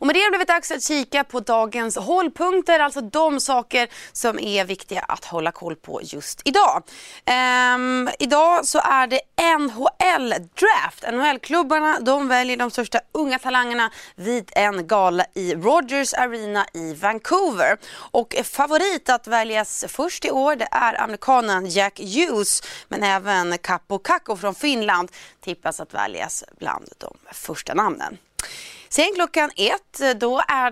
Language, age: Swedish, 30-49